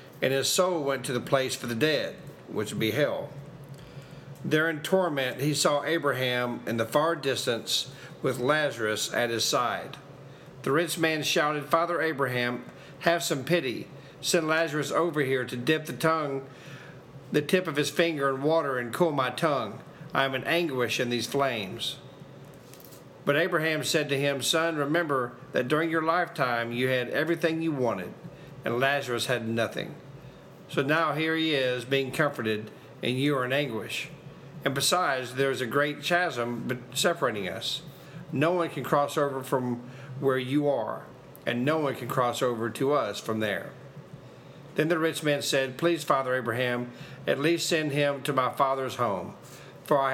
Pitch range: 130-155 Hz